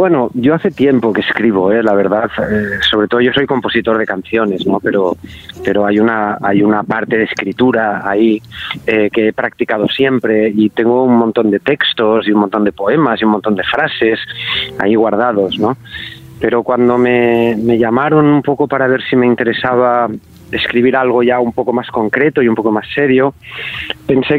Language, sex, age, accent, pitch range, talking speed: Spanish, male, 30-49, Spanish, 110-135 Hz, 190 wpm